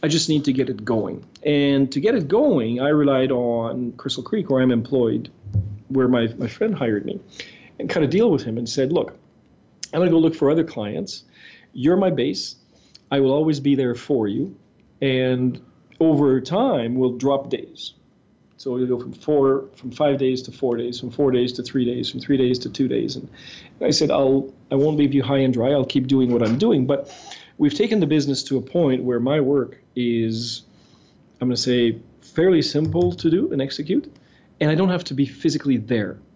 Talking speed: 215 wpm